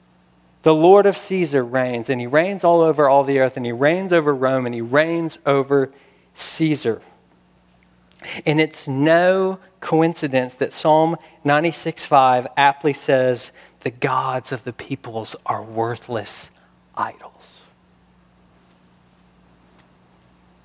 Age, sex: 40-59, male